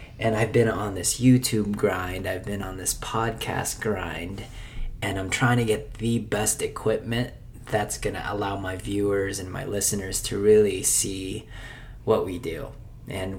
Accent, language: American, English